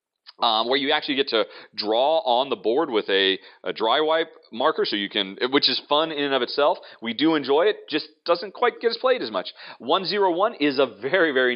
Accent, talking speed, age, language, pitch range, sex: American, 235 wpm, 40-59, English, 130-205 Hz, male